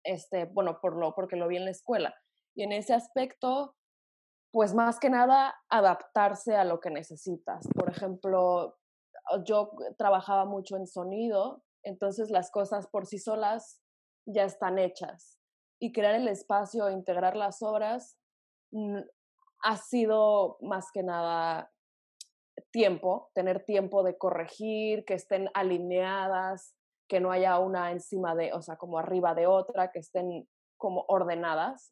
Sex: female